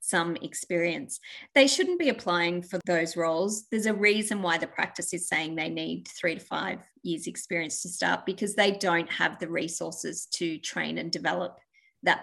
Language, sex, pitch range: English, female, 175-215 Hz